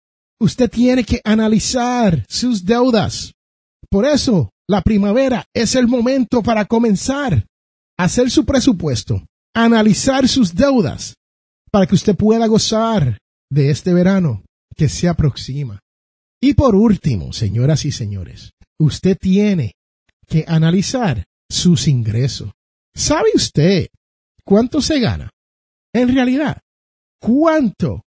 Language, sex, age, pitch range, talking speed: Spanish, male, 50-69, 150-250 Hz, 115 wpm